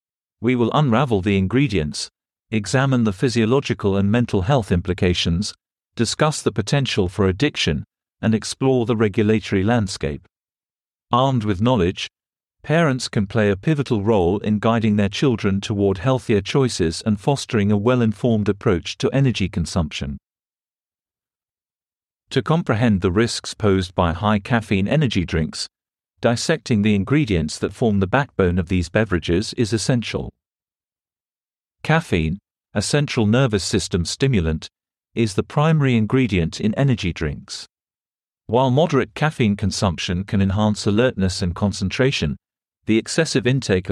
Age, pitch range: 50-69, 95-125 Hz